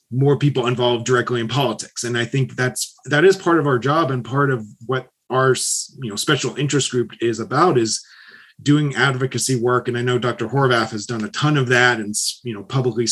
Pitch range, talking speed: 120-140 Hz, 215 wpm